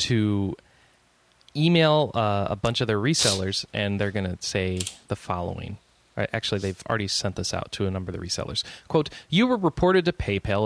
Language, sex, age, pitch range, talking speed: English, male, 30-49, 100-130 Hz, 185 wpm